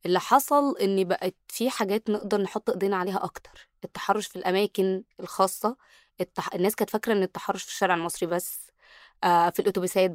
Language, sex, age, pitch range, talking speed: Arabic, female, 20-39, 185-230 Hz, 165 wpm